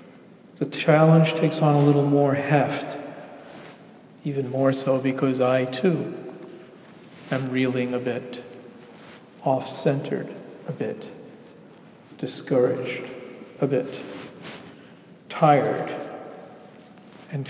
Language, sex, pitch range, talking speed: English, male, 130-145 Hz, 90 wpm